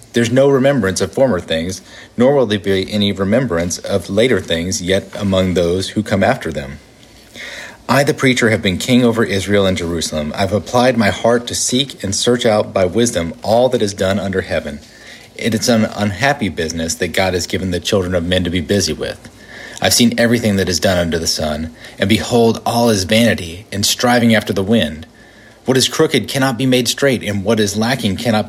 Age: 40-59